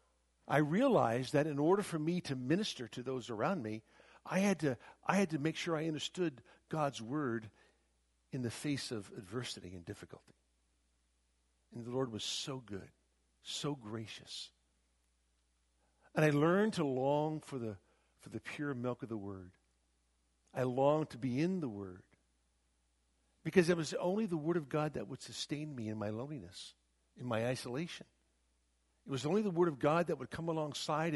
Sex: male